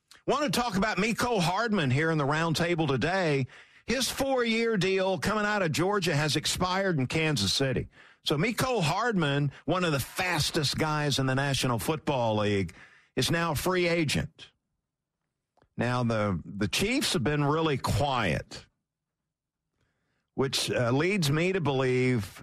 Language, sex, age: English, male, 50-69